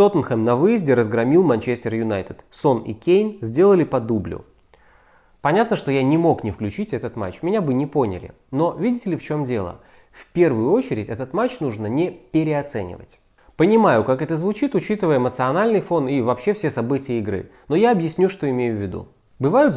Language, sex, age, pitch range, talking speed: Russian, male, 20-39, 115-175 Hz, 180 wpm